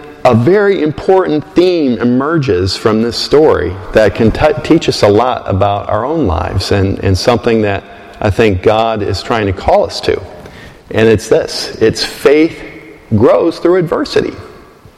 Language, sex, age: English, male, 50-69